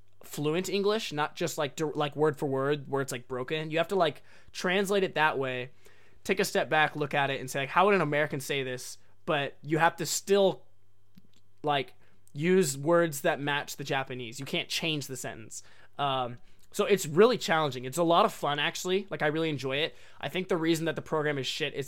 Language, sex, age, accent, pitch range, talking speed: English, male, 20-39, American, 130-160 Hz, 215 wpm